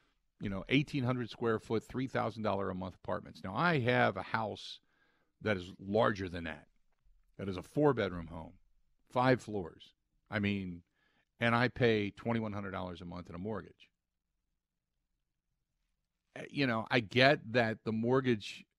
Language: English